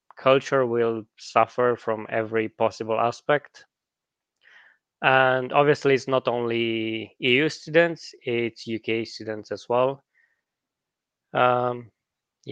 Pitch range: 115-130 Hz